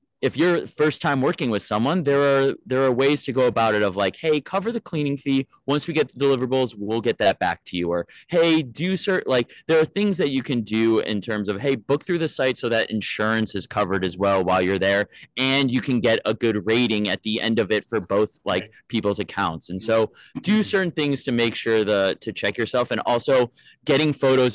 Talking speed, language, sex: 235 wpm, English, male